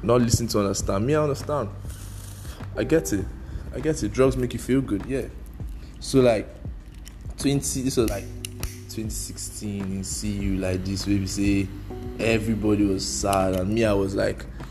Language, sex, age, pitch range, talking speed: English, male, 20-39, 95-115 Hz, 165 wpm